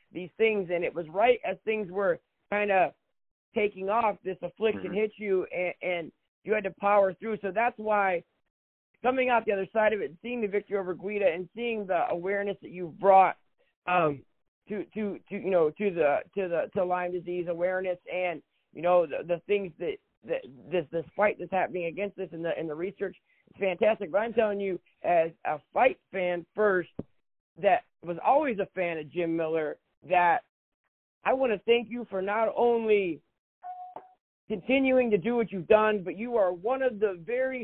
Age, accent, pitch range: 50-69, American, 180-225 Hz